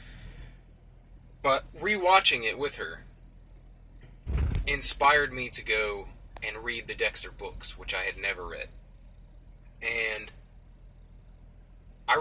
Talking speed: 105 wpm